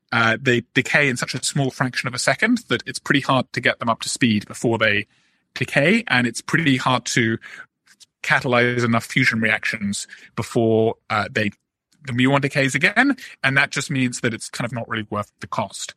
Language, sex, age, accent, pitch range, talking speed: English, male, 30-49, British, 120-150 Hz, 200 wpm